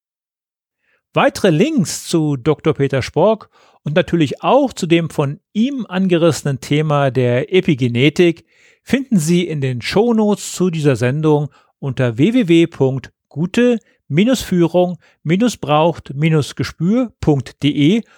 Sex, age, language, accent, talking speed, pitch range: male, 40-59, German, German, 90 wpm, 140-200 Hz